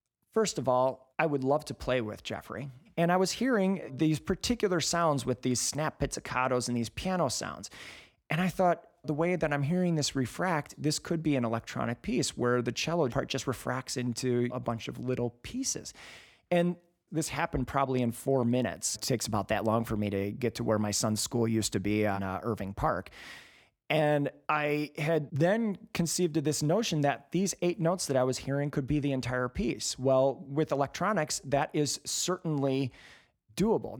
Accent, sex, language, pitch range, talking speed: American, male, English, 125-165 Hz, 190 wpm